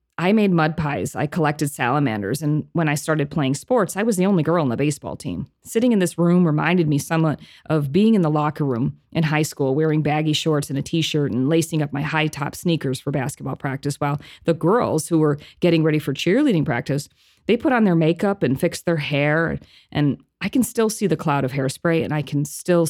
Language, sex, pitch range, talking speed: English, female, 145-180 Hz, 225 wpm